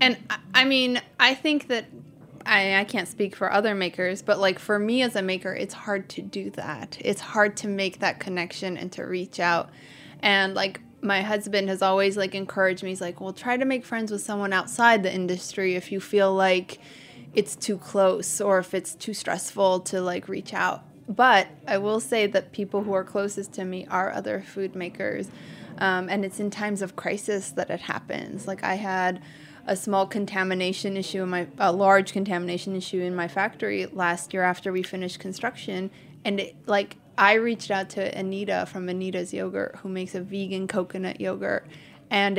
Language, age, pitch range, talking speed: English, 20-39, 185-205 Hz, 195 wpm